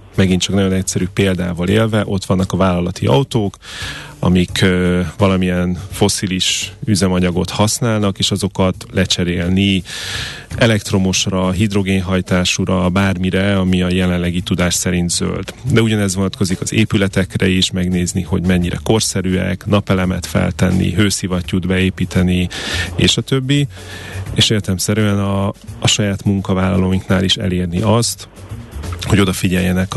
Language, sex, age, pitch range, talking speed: Hungarian, male, 30-49, 90-105 Hz, 115 wpm